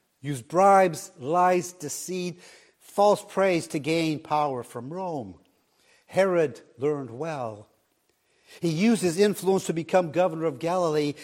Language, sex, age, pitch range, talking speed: English, male, 60-79, 135-175 Hz, 125 wpm